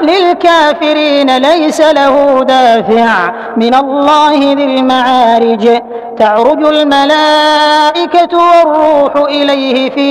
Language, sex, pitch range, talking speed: Arabic, female, 260-300 Hz, 75 wpm